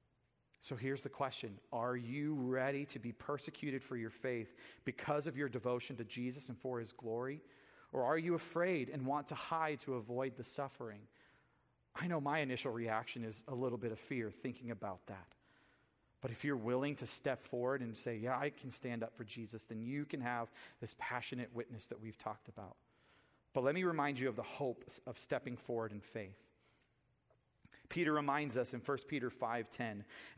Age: 40-59